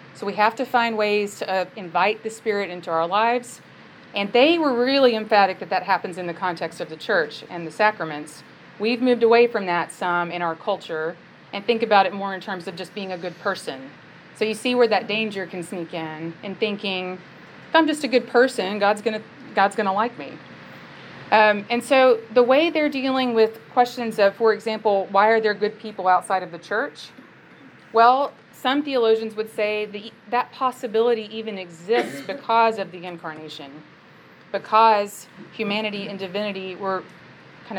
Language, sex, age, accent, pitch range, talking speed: English, female, 30-49, American, 180-230 Hz, 185 wpm